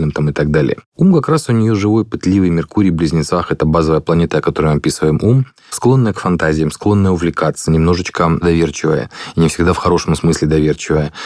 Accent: native